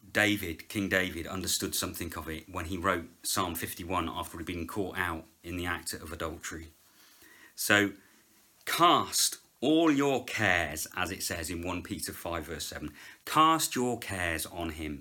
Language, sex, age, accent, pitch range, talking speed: English, male, 40-59, British, 85-120 Hz, 165 wpm